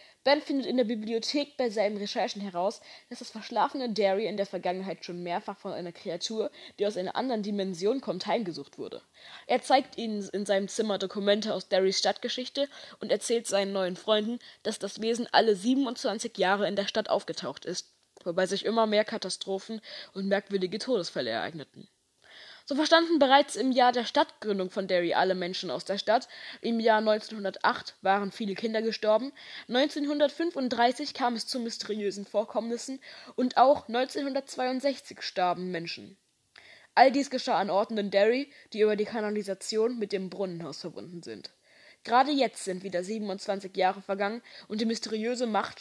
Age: 20-39